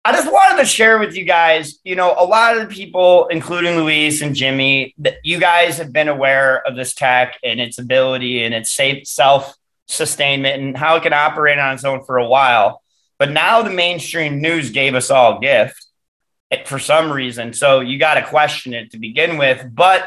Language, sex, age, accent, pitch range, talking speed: English, male, 30-49, American, 125-160 Hz, 205 wpm